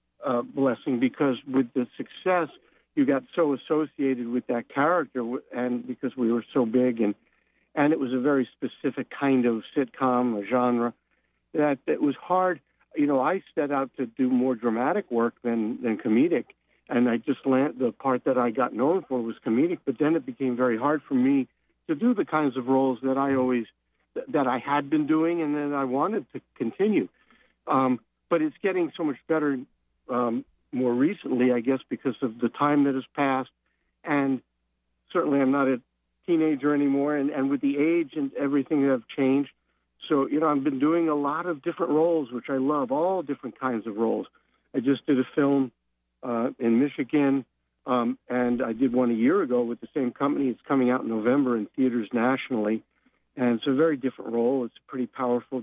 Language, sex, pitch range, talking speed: English, male, 120-145 Hz, 195 wpm